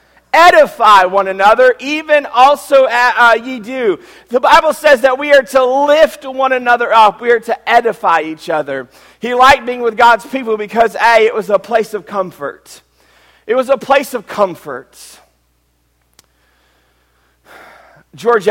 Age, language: 40-59, English